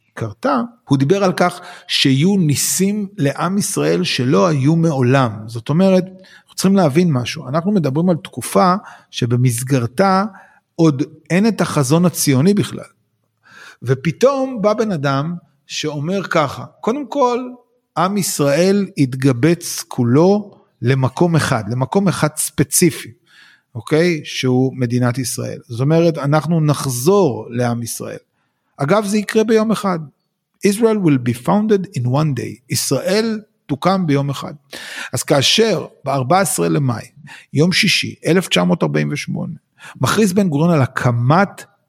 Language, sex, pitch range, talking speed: Hebrew, male, 135-190 Hz, 120 wpm